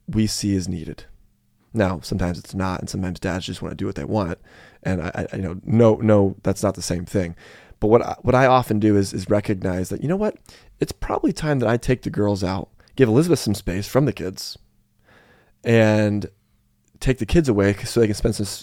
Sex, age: male, 20-39